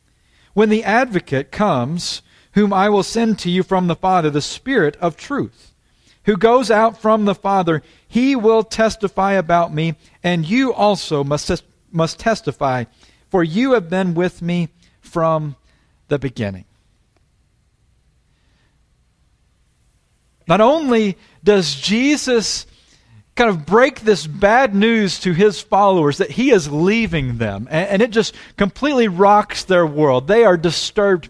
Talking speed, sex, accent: 140 wpm, male, American